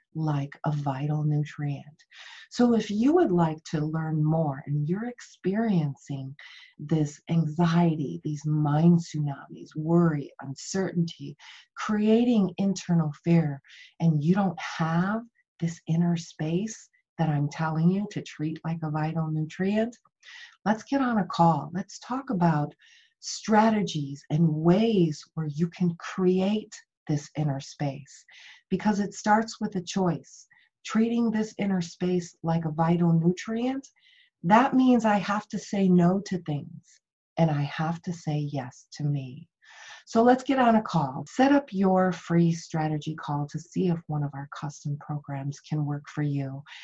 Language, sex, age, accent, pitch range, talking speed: English, female, 40-59, American, 150-200 Hz, 145 wpm